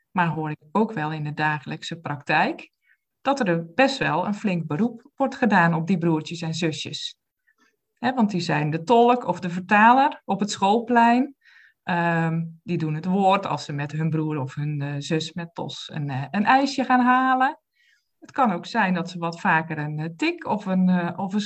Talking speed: 180 wpm